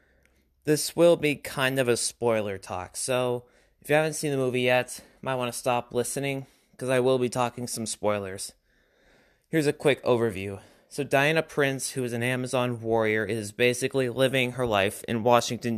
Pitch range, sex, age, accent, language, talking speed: 110-130 Hz, male, 20-39, American, English, 185 wpm